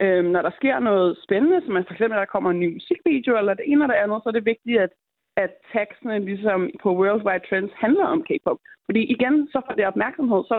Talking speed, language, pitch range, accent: 240 wpm, Danish, 190-240 Hz, native